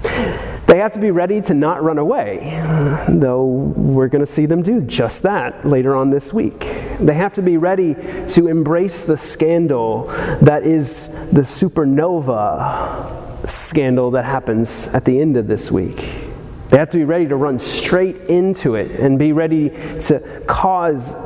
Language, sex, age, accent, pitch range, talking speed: English, male, 30-49, American, 125-165 Hz, 165 wpm